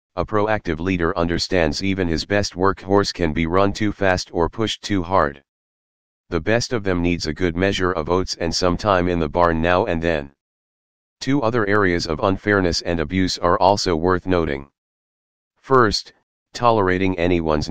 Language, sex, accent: English, male, American